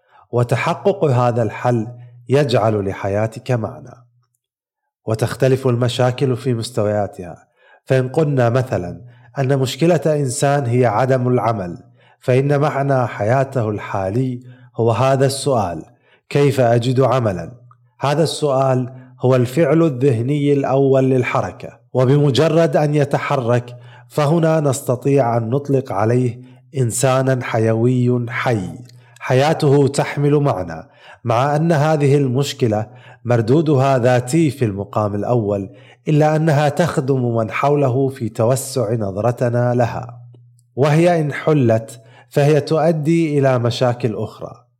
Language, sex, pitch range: Arabic, male, 120-145 Hz